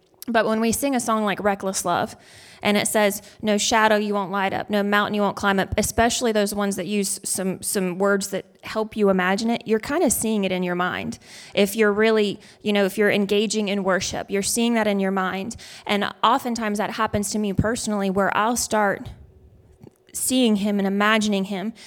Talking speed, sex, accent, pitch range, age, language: 210 wpm, female, American, 195-220 Hz, 20-39, English